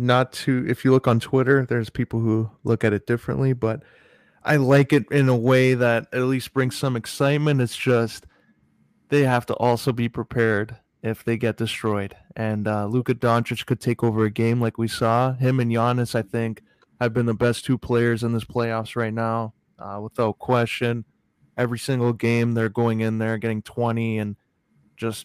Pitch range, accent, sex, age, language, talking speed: 115-125 Hz, American, male, 20-39, English, 190 wpm